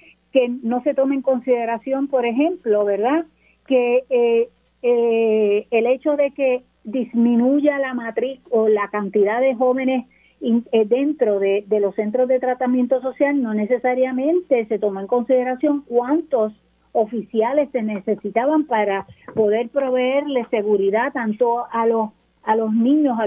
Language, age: Spanish, 40-59